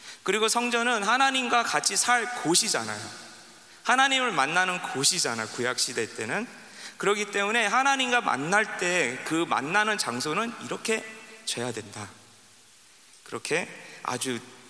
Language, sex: Korean, male